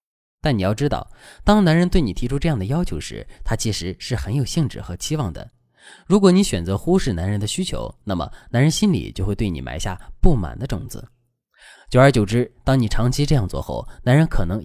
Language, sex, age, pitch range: Chinese, male, 20-39, 95-145 Hz